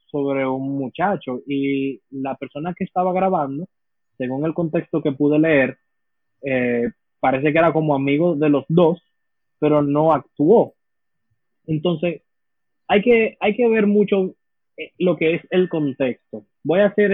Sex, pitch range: male, 135-170 Hz